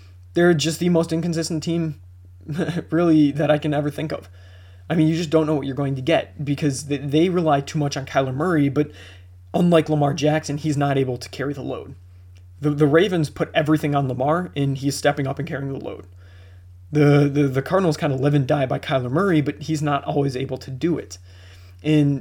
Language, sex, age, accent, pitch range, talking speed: English, male, 20-39, American, 130-150 Hz, 215 wpm